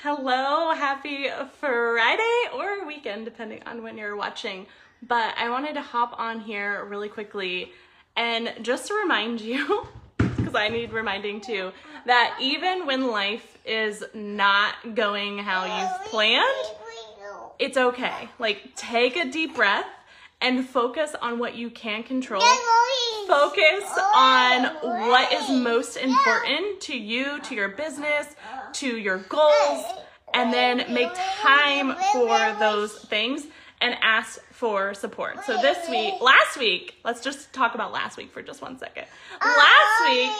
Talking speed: 140 wpm